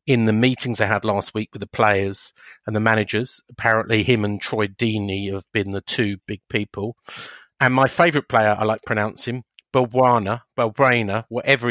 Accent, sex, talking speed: British, male, 185 wpm